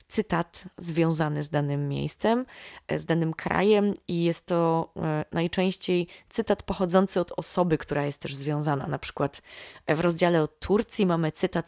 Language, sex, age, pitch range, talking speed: Polish, female, 20-39, 155-185 Hz, 145 wpm